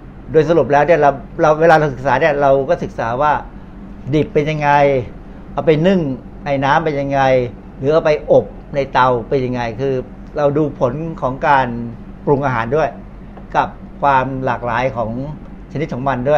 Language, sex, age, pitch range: Thai, male, 60-79, 130-155 Hz